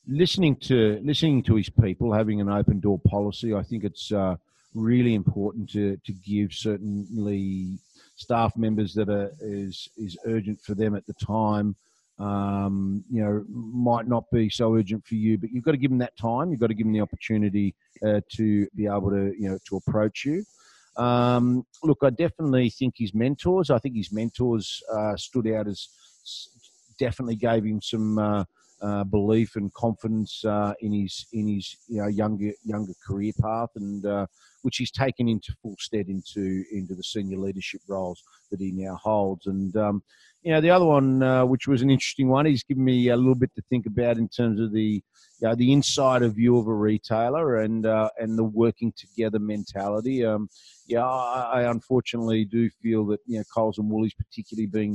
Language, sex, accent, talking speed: English, male, Australian, 195 wpm